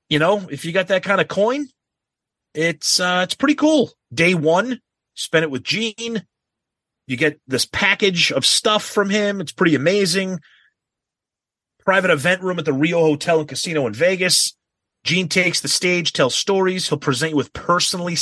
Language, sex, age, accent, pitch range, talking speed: English, male, 30-49, American, 130-180 Hz, 175 wpm